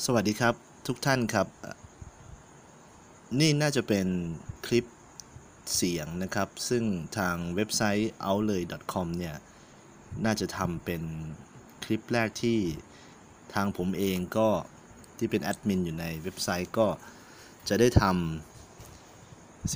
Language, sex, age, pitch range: Thai, male, 30-49, 90-110 Hz